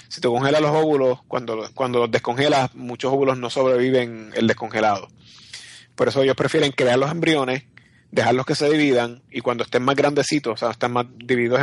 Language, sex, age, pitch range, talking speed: Spanish, male, 30-49, 120-145 Hz, 180 wpm